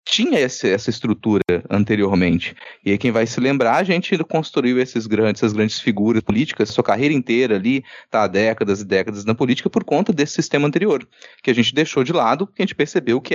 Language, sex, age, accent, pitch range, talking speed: Portuguese, male, 30-49, Brazilian, 115-160 Hz, 210 wpm